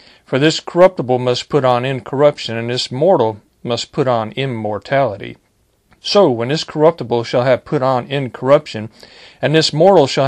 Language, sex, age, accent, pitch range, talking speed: English, male, 40-59, American, 120-145 Hz, 160 wpm